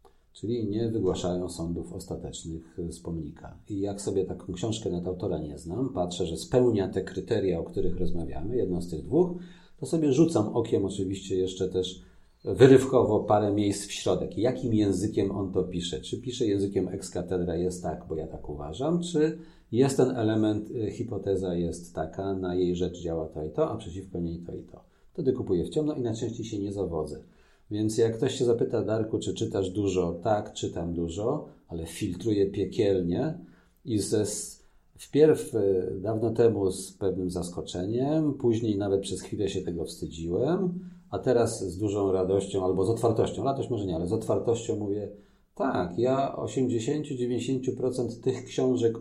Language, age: Polish, 40-59